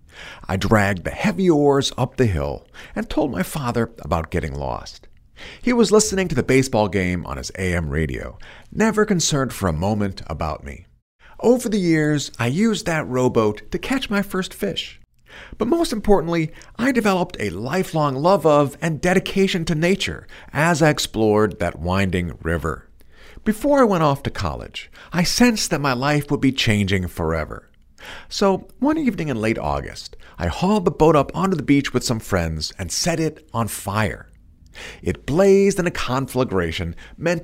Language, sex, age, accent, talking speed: English, male, 50-69, American, 170 wpm